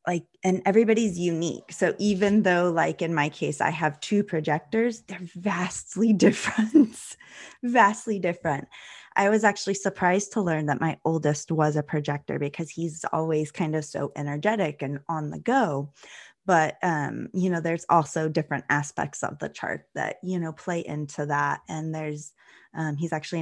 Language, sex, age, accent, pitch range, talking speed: English, female, 20-39, American, 150-185 Hz, 165 wpm